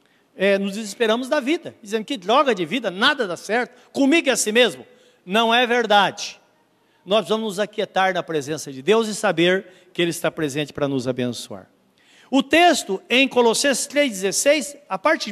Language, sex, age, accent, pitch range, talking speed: Portuguese, male, 60-79, Brazilian, 210-305 Hz, 170 wpm